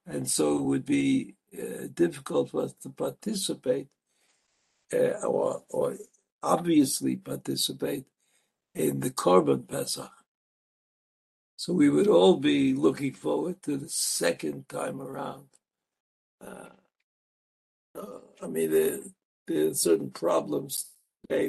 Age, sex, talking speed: 60-79, male, 115 wpm